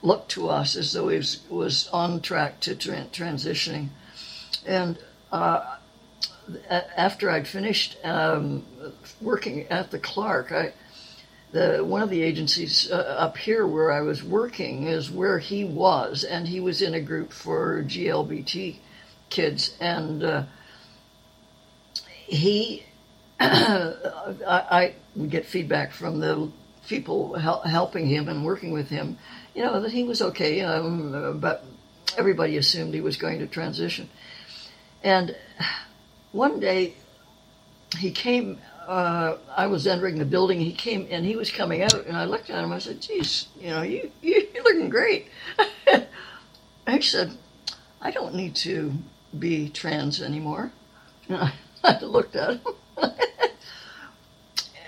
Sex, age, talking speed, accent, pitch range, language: female, 60-79, 135 wpm, American, 160-215 Hz, English